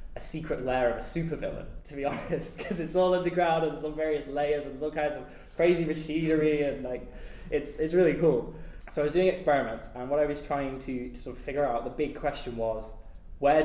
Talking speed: 220 wpm